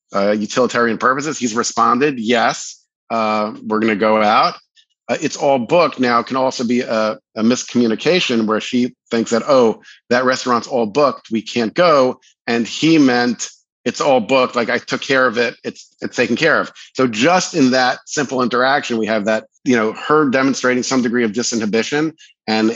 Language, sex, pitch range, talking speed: English, male, 115-135 Hz, 185 wpm